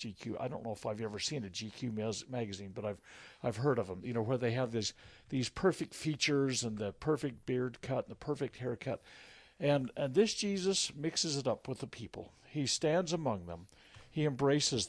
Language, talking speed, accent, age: English, 210 wpm, American, 60-79